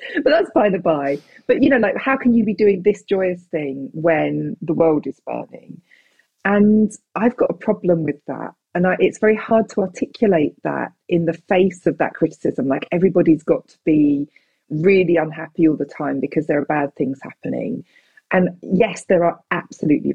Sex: female